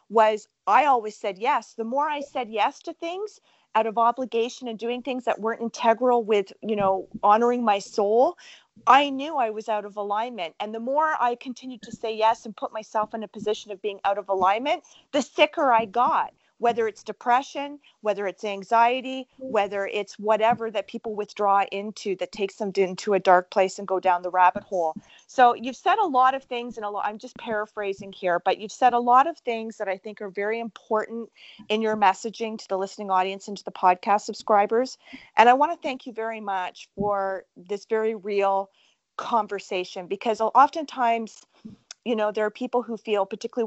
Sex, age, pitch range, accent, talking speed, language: female, 40-59, 200-250 Hz, American, 195 wpm, English